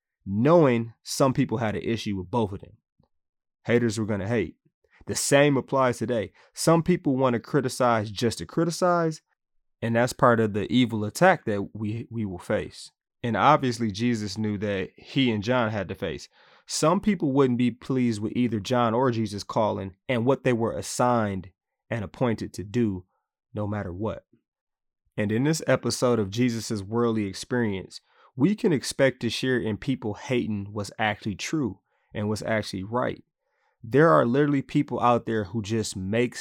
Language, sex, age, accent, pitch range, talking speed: English, male, 30-49, American, 105-130 Hz, 175 wpm